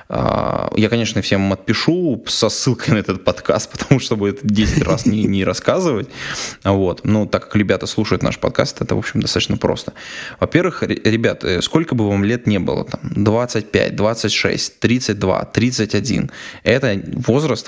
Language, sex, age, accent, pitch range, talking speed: Russian, male, 20-39, native, 100-120 Hz, 155 wpm